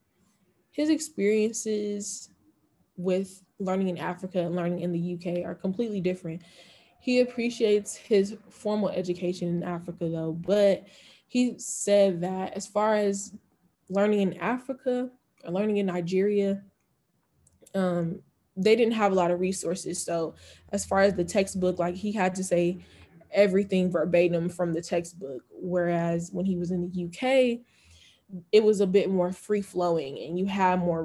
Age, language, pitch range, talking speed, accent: 10-29, English, 170-200 Hz, 150 wpm, American